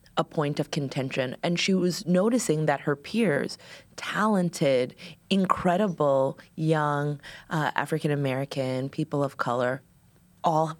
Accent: American